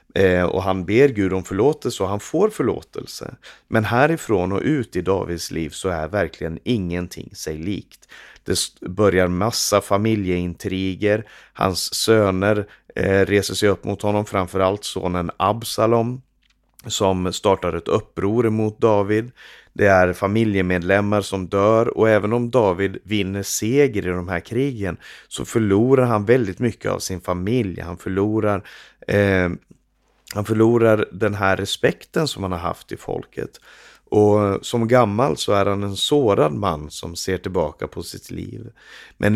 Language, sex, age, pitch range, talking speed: Swedish, male, 30-49, 90-110 Hz, 150 wpm